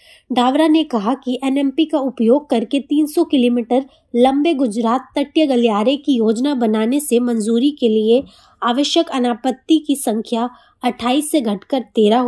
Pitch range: 235-285 Hz